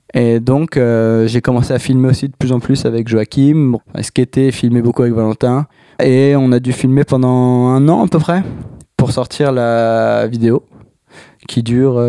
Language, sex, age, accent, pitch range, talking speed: French, male, 20-39, French, 120-140 Hz, 195 wpm